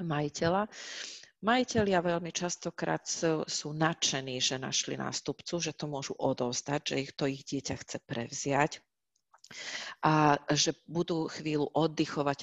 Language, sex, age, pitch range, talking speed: Slovak, female, 40-59, 140-170 Hz, 120 wpm